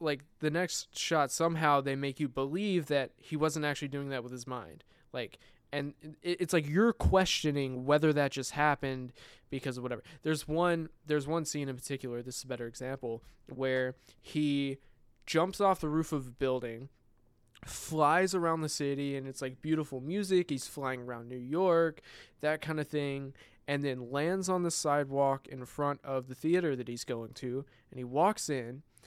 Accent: American